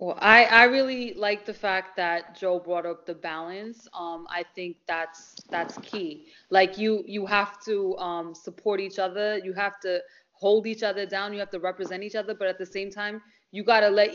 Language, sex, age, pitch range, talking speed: English, female, 20-39, 190-270 Hz, 210 wpm